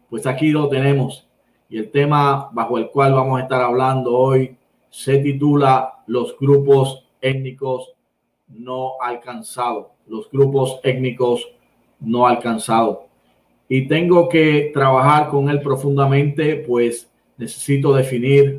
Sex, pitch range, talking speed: male, 125-140 Hz, 120 wpm